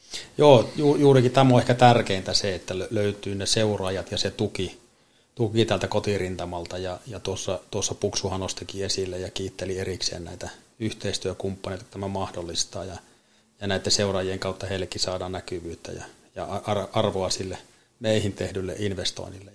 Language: Finnish